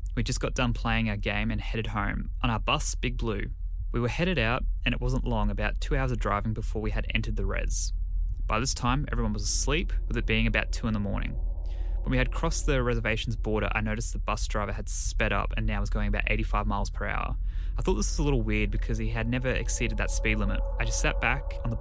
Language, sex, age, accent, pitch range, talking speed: English, male, 20-39, Australian, 100-115 Hz, 255 wpm